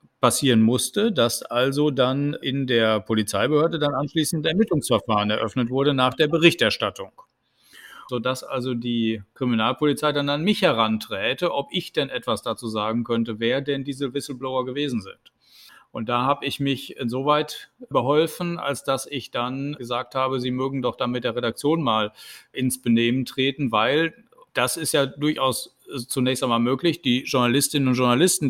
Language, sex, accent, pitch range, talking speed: German, male, German, 125-150 Hz, 155 wpm